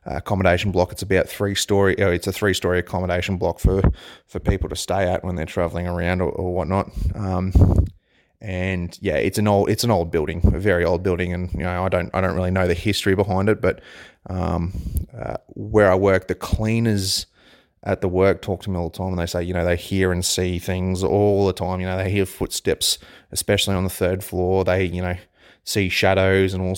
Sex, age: male, 30-49